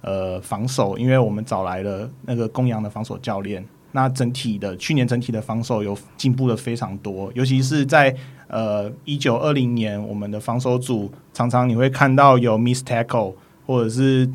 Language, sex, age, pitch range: Chinese, male, 20-39, 110-140 Hz